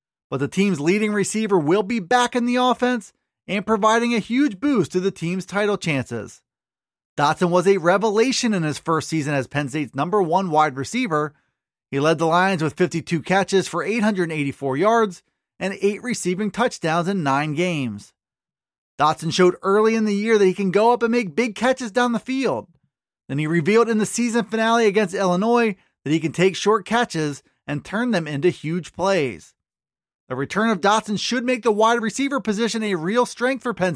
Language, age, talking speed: English, 30-49, 190 wpm